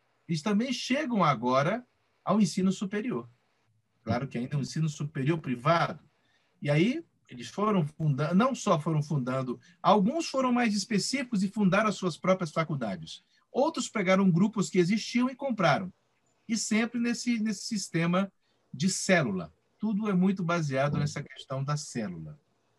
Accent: Brazilian